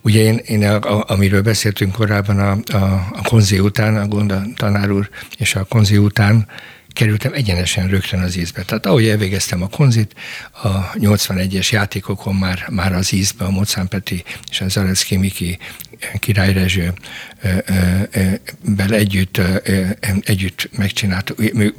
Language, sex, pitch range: Hungarian, male, 95-110 Hz